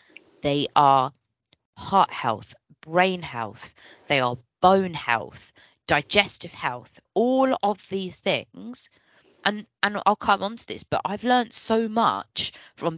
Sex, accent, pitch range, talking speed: female, British, 140-200 Hz, 135 wpm